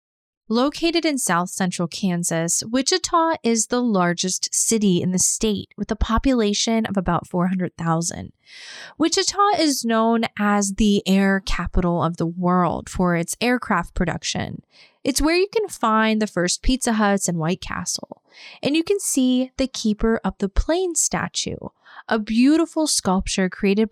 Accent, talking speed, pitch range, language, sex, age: American, 145 wpm, 180-255 Hz, English, female, 20-39